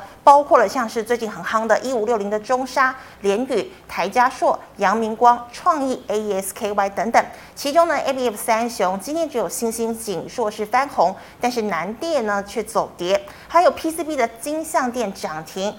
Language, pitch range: Chinese, 205-270 Hz